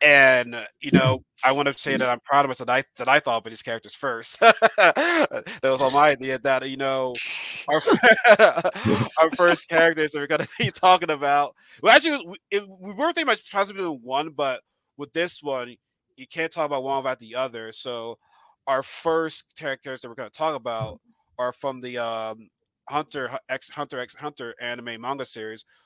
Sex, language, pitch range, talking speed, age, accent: male, English, 115-145 Hz, 195 wpm, 30-49, American